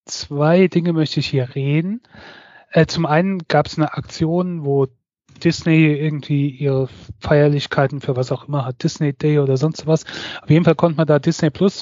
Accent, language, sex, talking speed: German, German, male, 185 wpm